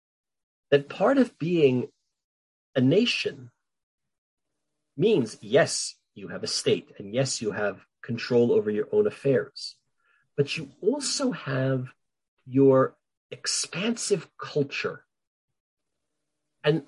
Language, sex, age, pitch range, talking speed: English, male, 40-59, 130-185 Hz, 105 wpm